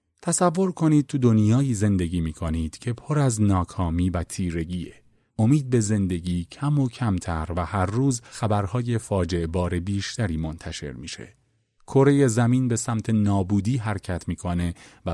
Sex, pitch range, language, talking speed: male, 95-130 Hz, Persian, 140 wpm